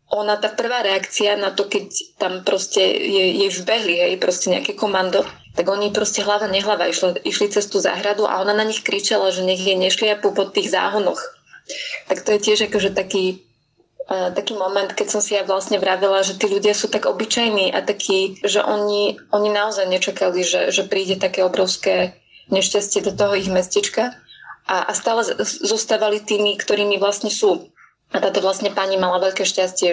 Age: 20-39